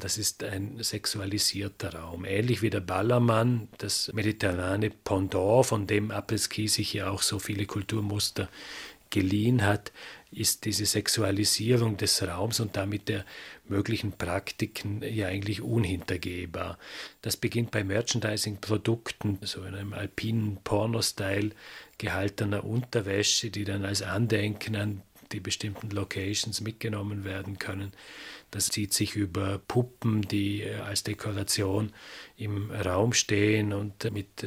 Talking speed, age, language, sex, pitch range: 125 wpm, 40-59, German, male, 100-110 Hz